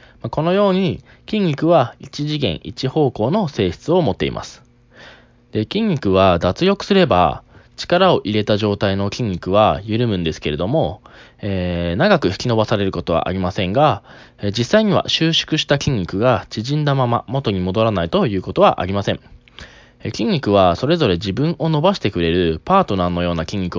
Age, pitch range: 20-39, 95-155 Hz